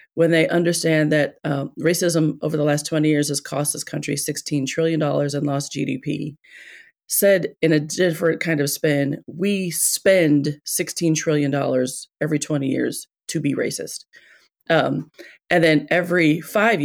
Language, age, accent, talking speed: English, 30-49, American, 150 wpm